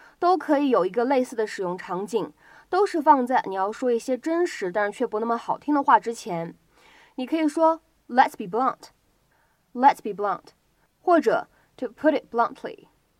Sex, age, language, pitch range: female, 20-39, Chinese, 225-310 Hz